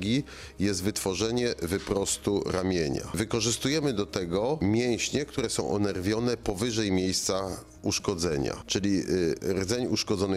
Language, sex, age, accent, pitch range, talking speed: Polish, male, 40-59, native, 90-110 Hz, 100 wpm